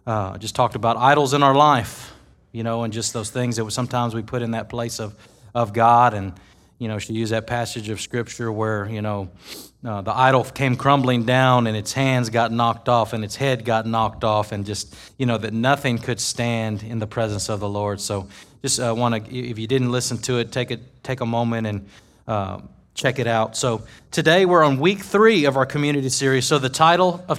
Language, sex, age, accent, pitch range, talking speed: English, male, 30-49, American, 115-145 Hz, 225 wpm